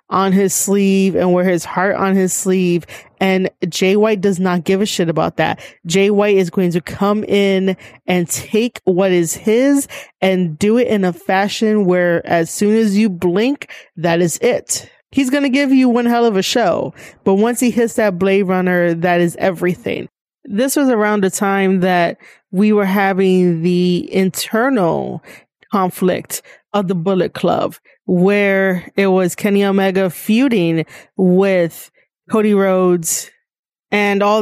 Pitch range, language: 180-210 Hz, English